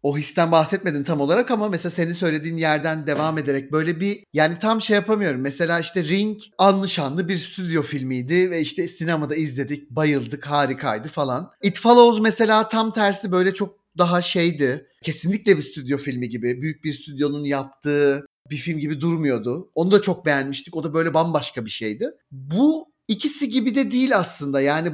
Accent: native